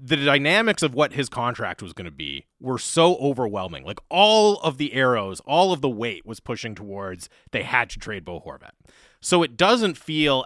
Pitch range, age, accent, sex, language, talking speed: 115-155 Hz, 30-49, American, male, English, 200 wpm